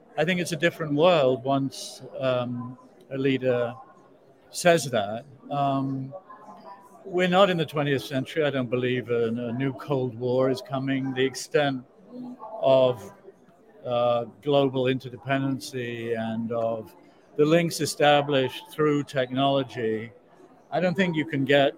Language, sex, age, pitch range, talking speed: English, male, 60-79, 125-155 Hz, 130 wpm